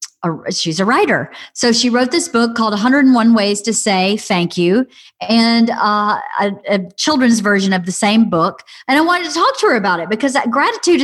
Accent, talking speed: American, 195 wpm